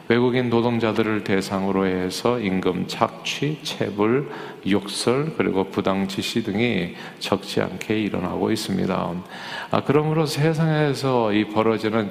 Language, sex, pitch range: Korean, male, 100-130 Hz